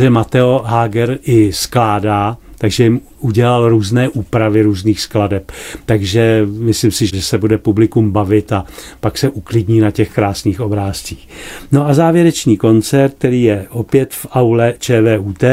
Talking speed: 145 wpm